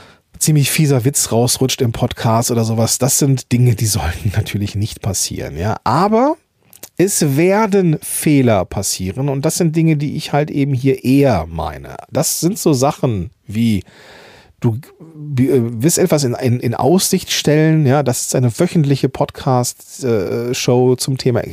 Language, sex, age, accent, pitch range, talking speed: German, male, 40-59, German, 120-160 Hz, 155 wpm